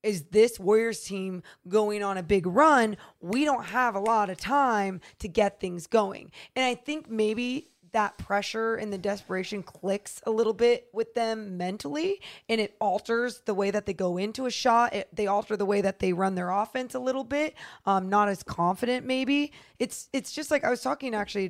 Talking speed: 200 wpm